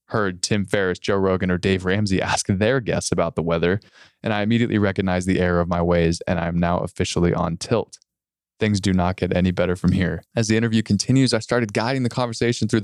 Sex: male